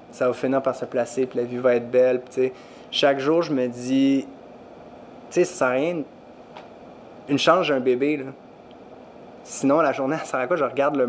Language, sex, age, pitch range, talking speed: French, male, 20-39, 125-150 Hz, 225 wpm